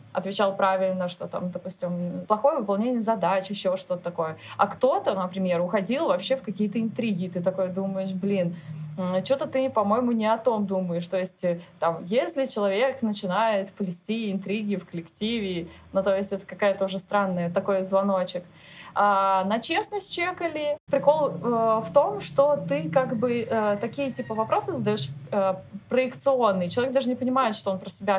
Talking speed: 160 wpm